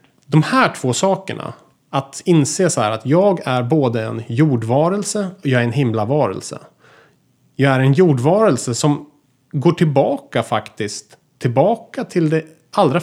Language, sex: Swedish, male